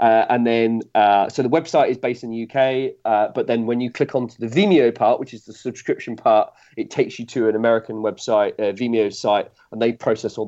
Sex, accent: male, British